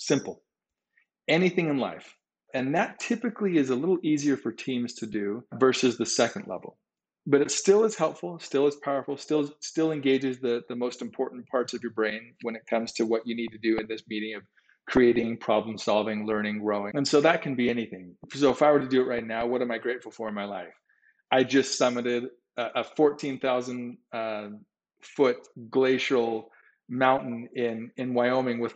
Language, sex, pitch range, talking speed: English, male, 115-140 Hz, 195 wpm